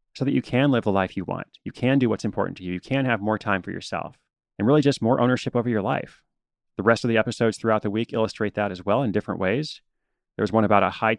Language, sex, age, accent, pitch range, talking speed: English, male, 30-49, American, 105-120 Hz, 280 wpm